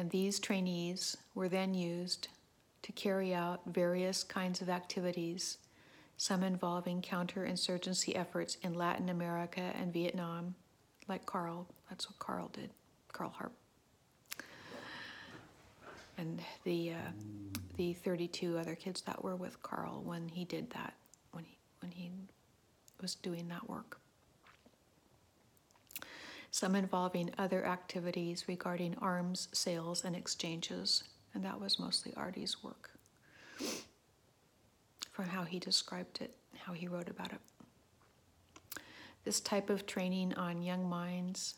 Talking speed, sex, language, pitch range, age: 125 wpm, female, English, 175-185 Hz, 60-79